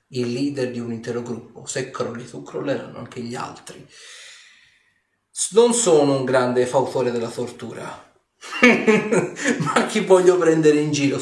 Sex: male